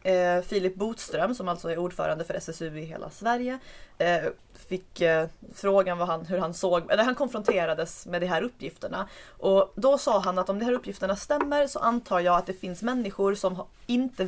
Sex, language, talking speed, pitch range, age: female, Swedish, 200 wpm, 175-210 Hz, 20-39